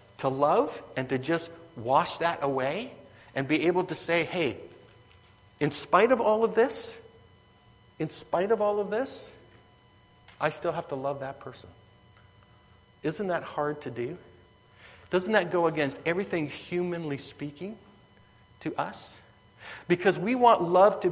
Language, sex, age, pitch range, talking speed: English, male, 60-79, 110-175 Hz, 150 wpm